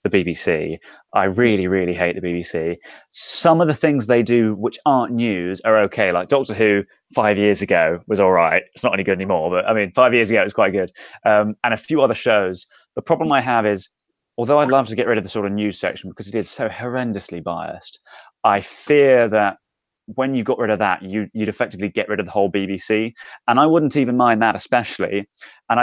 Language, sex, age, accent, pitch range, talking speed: English, male, 20-39, British, 100-125 Hz, 225 wpm